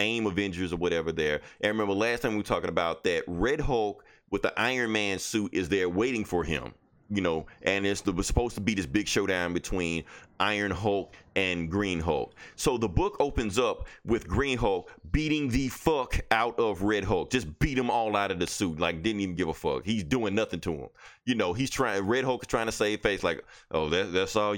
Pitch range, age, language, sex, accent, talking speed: 95-125 Hz, 30-49, English, male, American, 220 wpm